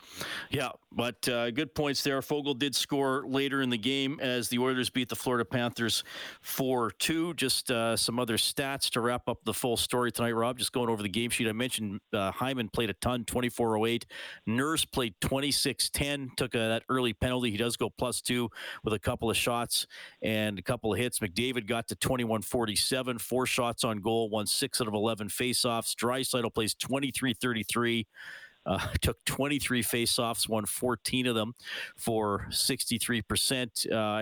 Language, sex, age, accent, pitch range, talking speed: English, male, 40-59, American, 110-130 Hz, 175 wpm